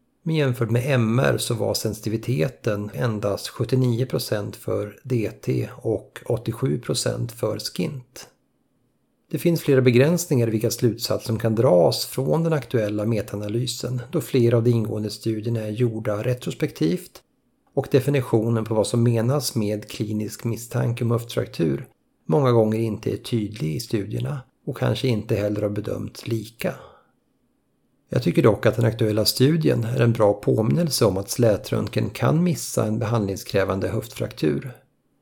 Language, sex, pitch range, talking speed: Swedish, male, 110-130 Hz, 140 wpm